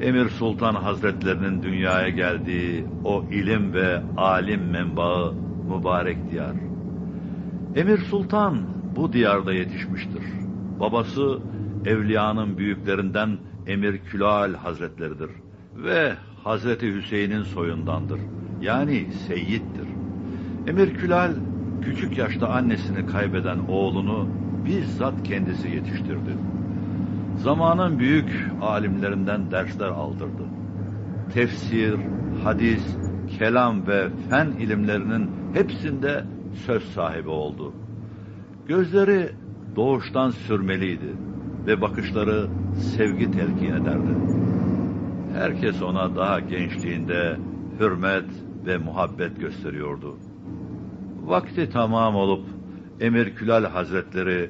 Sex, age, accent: male, 60-79, native